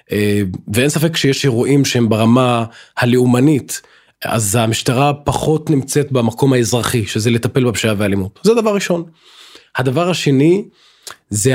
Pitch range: 115-150 Hz